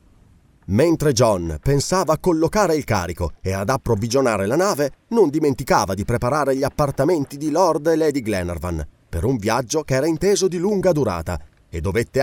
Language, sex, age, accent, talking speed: Italian, male, 30-49, native, 165 wpm